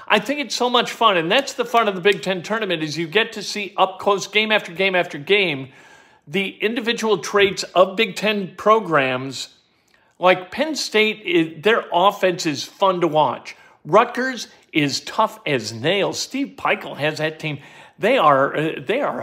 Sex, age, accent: male, 50-69, American